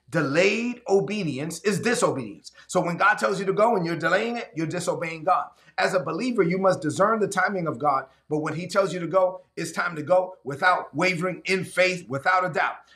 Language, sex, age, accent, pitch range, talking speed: English, male, 30-49, American, 145-185 Hz, 215 wpm